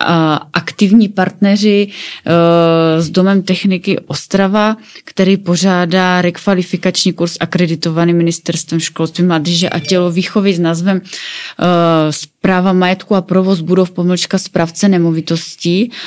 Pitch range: 170-195 Hz